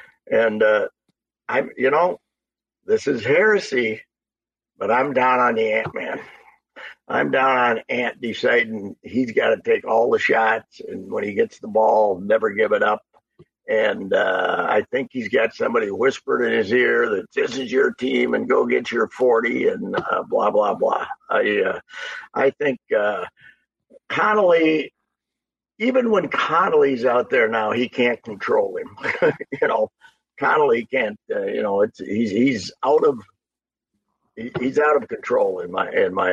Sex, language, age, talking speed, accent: male, English, 50-69, 160 wpm, American